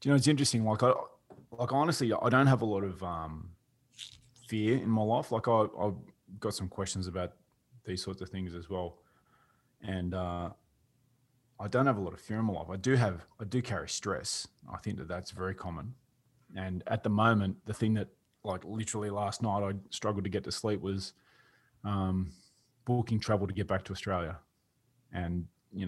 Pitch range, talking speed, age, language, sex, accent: 90-115 Hz, 190 wpm, 20-39, English, male, Australian